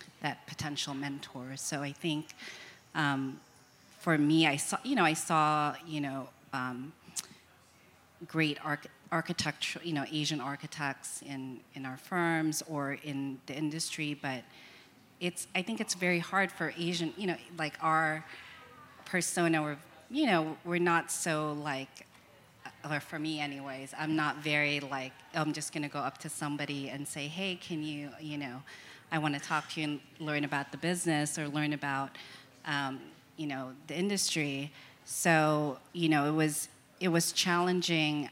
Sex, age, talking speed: female, 30-49, 160 wpm